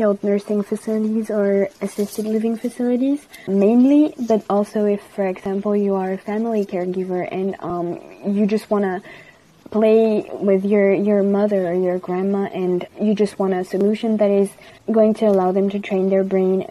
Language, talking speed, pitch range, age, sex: English, 170 wpm, 190-215 Hz, 20-39, female